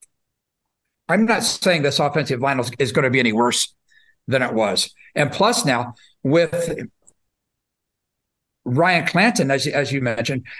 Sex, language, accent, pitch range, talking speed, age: male, English, American, 130-175 Hz, 140 wpm, 60-79